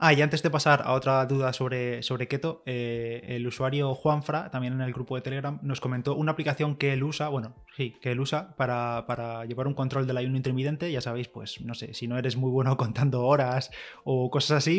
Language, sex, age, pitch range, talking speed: Spanish, male, 20-39, 125-150 Hz, 225 wpm